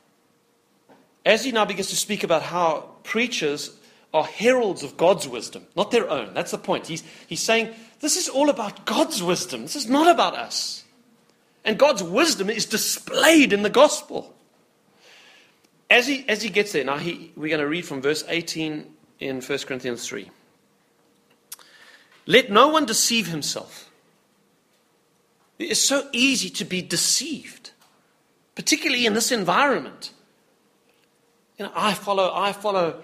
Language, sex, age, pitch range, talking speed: English, male, 40-59, 170-265 Hz, 145 wpm